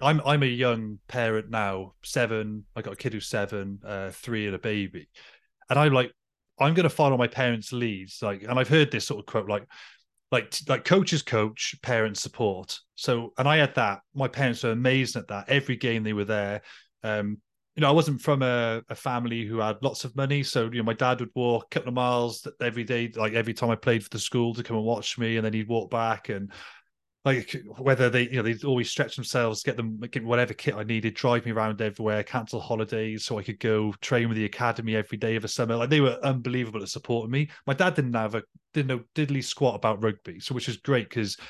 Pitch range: 110-130 Hz